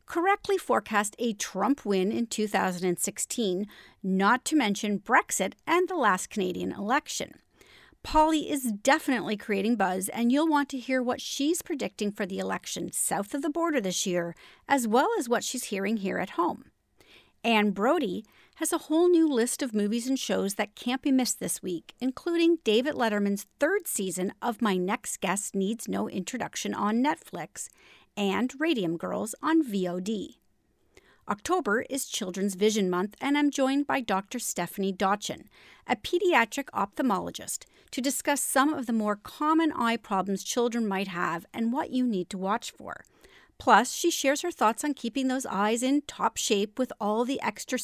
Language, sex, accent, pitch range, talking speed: English, female, American, 200-280 Hz, 165 wpm